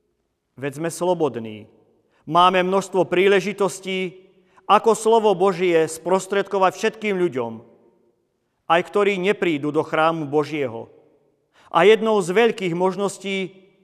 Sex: male